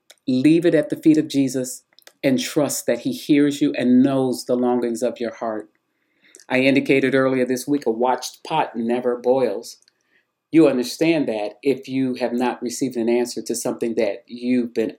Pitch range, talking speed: 120-150 Hz, 180 wpm